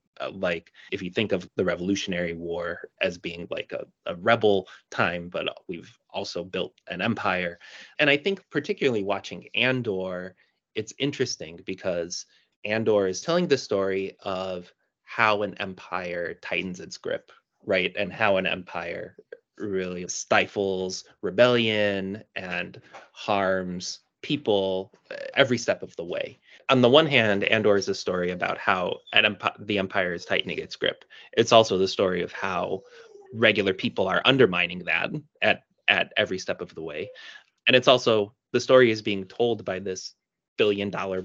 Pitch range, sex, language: 95-145 Hz, male, English